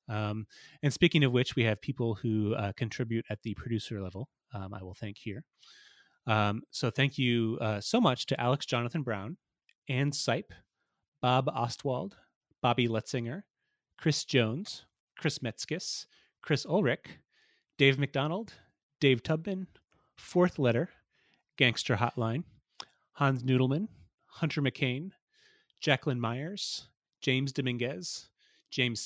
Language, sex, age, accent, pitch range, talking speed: English, male, 30-49, American, 115-150 Hz, 125 wpm